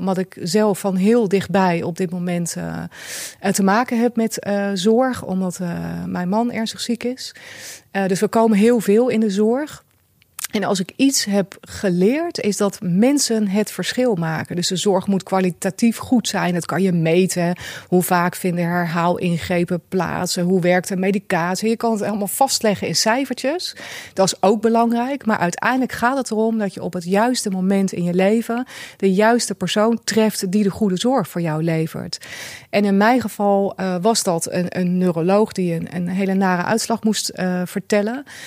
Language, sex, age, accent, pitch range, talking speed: Dutch, female, 30-49, Dutch, 180-220 Hz, 185 wpm